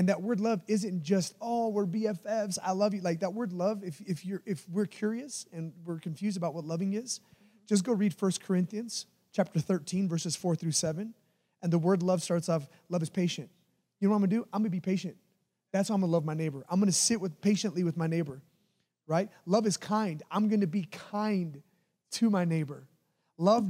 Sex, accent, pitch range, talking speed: male, American, 175-220 Hz, 220 wpm